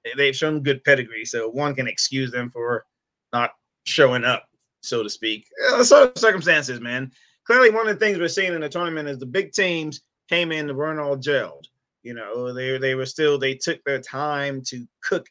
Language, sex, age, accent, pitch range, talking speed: English, male, 30-49, American, 130-175 Hz, 200 wpm